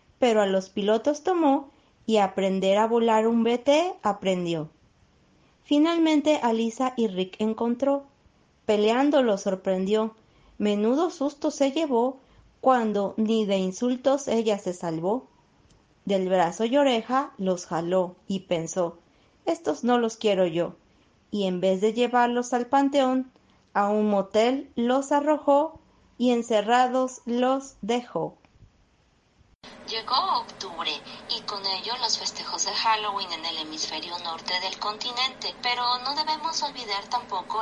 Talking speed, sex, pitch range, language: 130 wpm, female, 195-260 Hz, Spanish